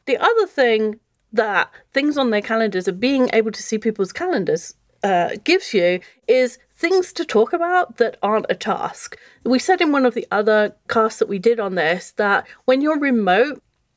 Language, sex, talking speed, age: English, female, 190 wpm, 30-49